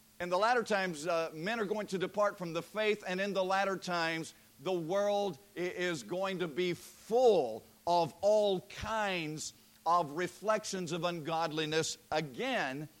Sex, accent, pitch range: male, American, 145-205 Hz